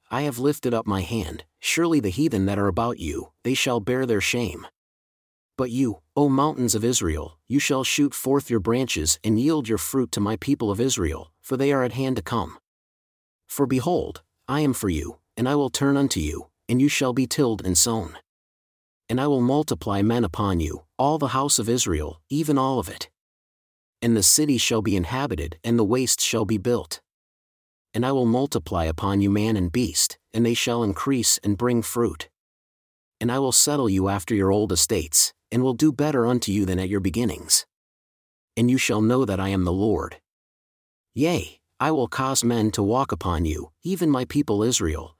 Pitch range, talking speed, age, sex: 100-135 Hz, 200 wpm, 30-49, male